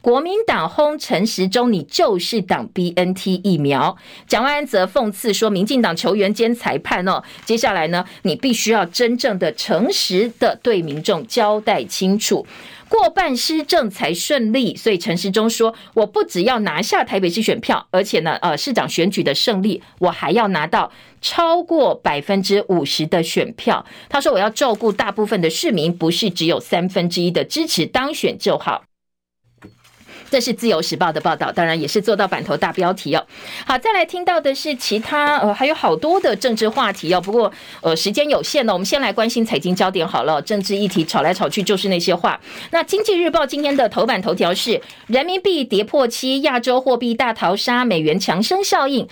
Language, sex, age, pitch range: Chinese, female, 50-69, 185-275 Hz